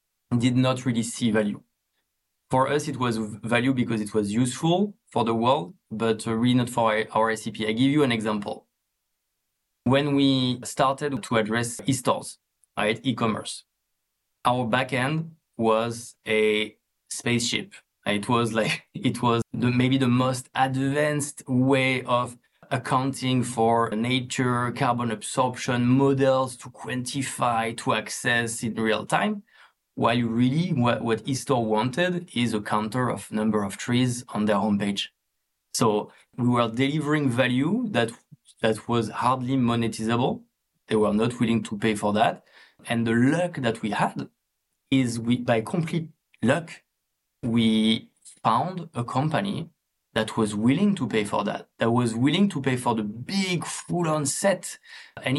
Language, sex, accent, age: English, male, French, 20-39